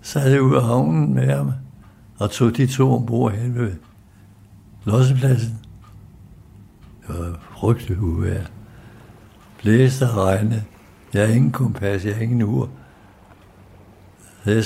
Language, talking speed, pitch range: Danish, 130 wpm, 100-125 Hz